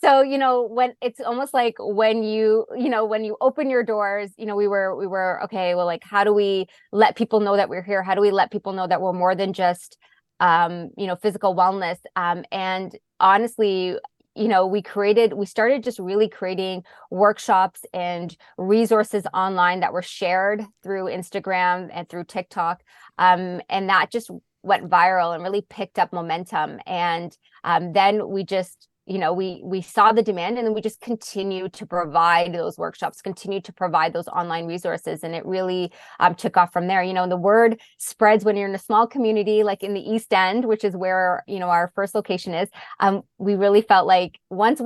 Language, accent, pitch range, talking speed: English, American, 180-215 Hz, 205 wpm